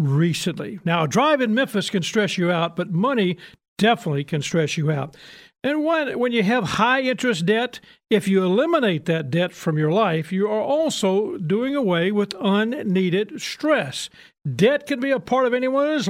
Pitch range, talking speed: 170-245 Hz, 180 wpm